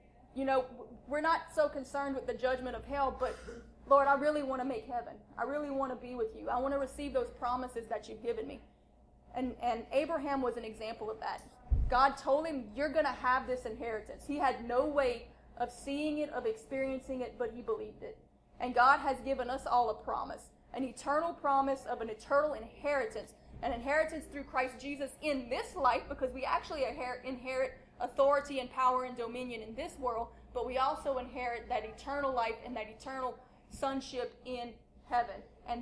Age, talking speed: 20-39, 195 wpm